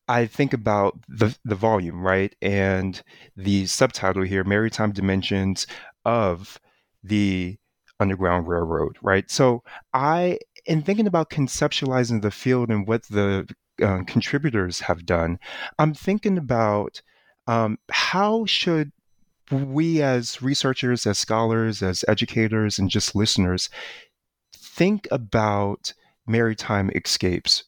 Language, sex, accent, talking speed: English, male, American, 115 wpm